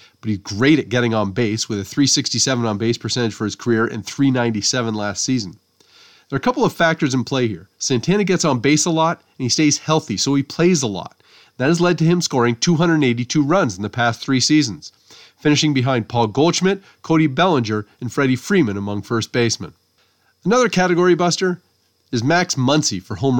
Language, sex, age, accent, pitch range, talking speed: English, male, 30-49, American, 115-160 Hz, 195 wpm